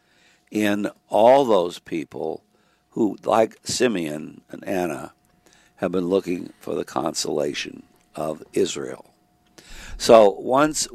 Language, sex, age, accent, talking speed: English, male, 60-79, American, 105 wpm